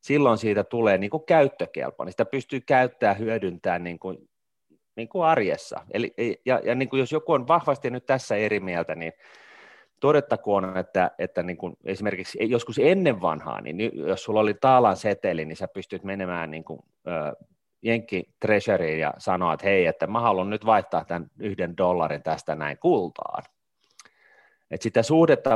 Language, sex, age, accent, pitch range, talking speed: Finnish, male, 30-49, native, 90-125 Hz, 155 wpm